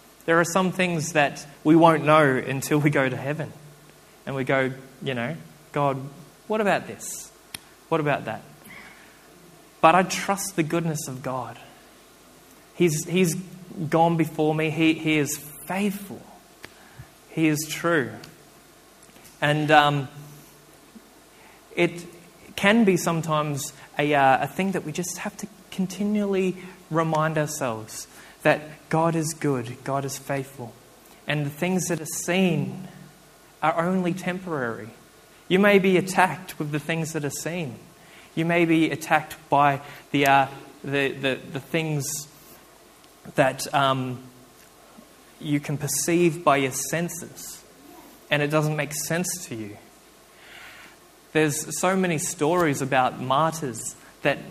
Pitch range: 140-175 Hz